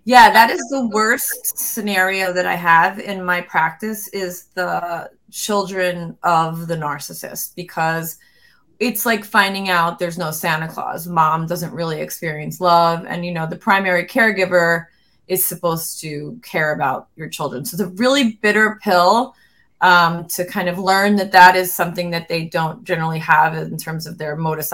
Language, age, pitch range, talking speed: English, 20-39, 170-210 Hz, 170 wpm